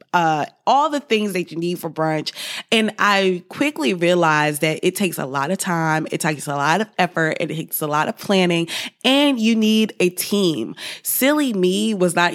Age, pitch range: 20-39, 165-200 Hz